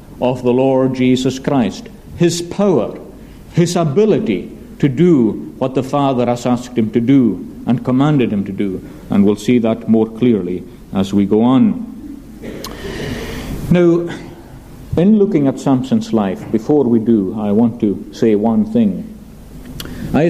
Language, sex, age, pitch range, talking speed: English, male, 60-79, 115-165 Hz, 150 wpm